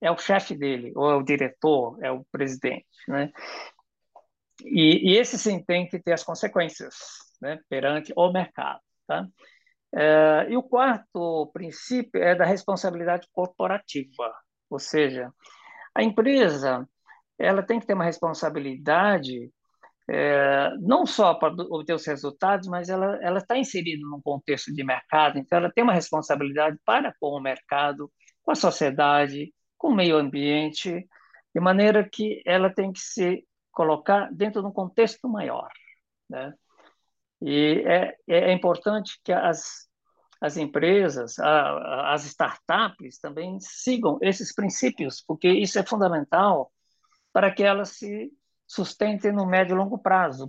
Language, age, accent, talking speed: Portuguese, 60-79, Brazilian, 145 wpm